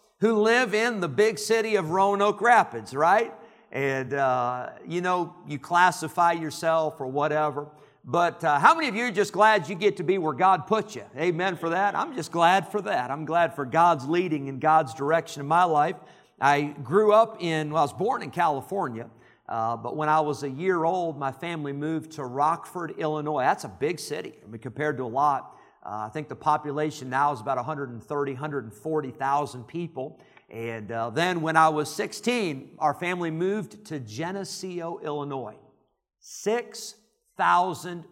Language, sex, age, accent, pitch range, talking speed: English, male, 50-69, American, 140-190 Hz, 175 wpm